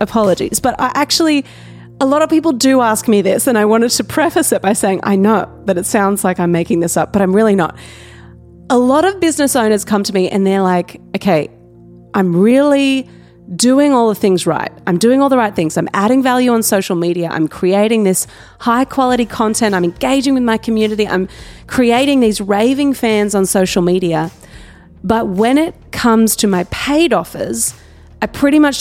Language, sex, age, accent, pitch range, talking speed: English, female, 30-49, Australian, 185-250 Hz, 200 wpm